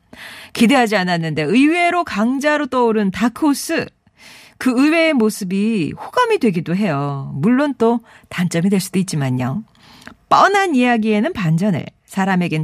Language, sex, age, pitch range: Korean, female, 40-59, 190-285 Hz